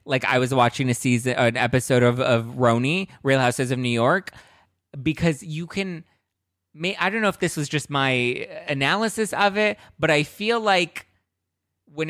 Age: 20-39